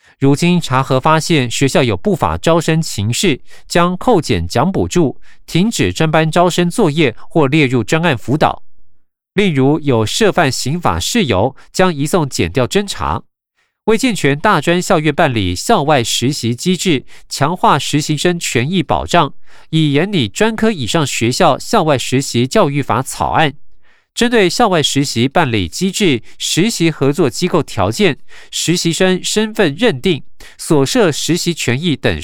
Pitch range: 125-180 Hz